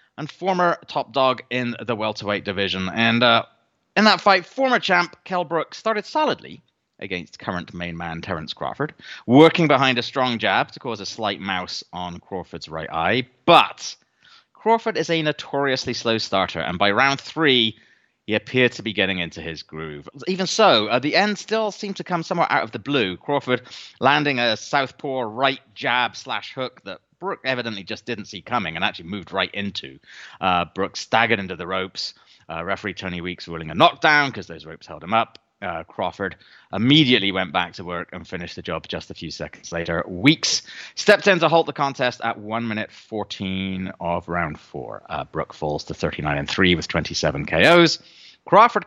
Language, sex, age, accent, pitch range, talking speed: English, male, 30-49, British, 95-160 Hz, 185 wpm